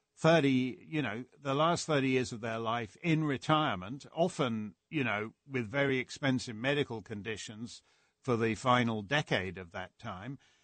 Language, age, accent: English, 50-69, British